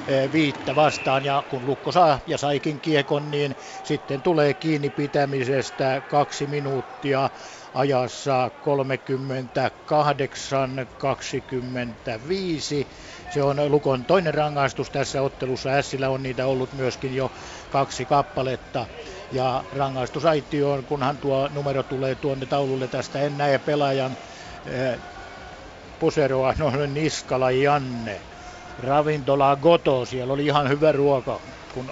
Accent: native